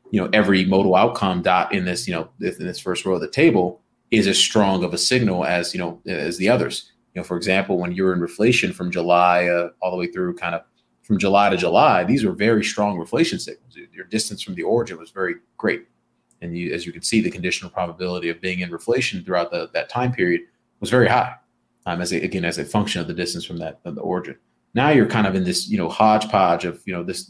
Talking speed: 250 wpm